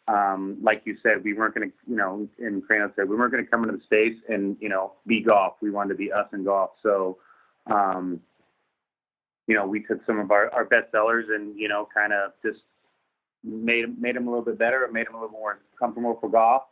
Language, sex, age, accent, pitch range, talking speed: English, male, 30-49, American, 100-110 Hz, 240 wpm